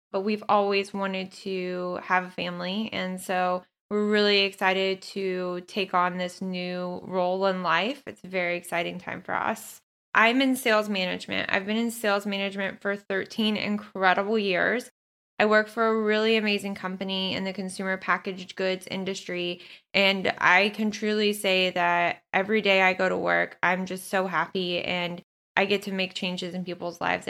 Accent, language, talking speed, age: American, English, 175 wpm, 10-29